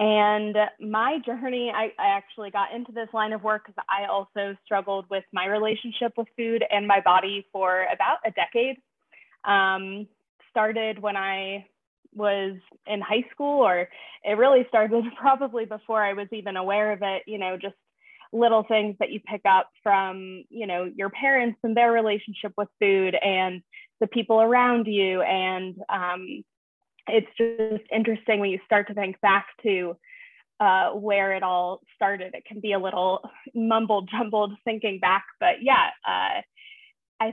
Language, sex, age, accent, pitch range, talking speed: English, female, 20-39, American, 195-230 Hz, 165 wpm